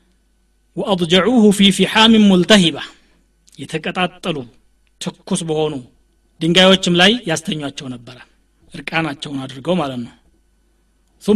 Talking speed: 85 wpm